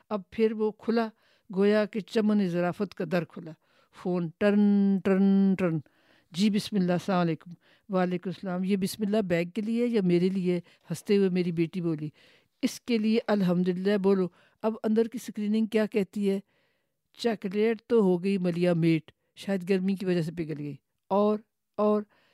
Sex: female